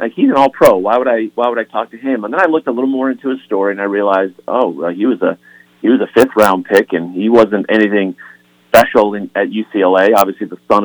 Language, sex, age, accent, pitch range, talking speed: English, male, 40-59, American, 95-120 Hz, 270 wpm